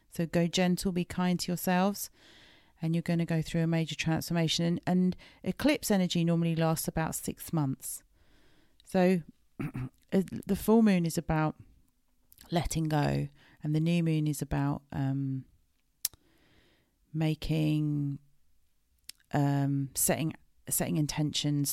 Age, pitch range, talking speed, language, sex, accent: 40-59, 140-185 Hz, 120 wpm, English, female, British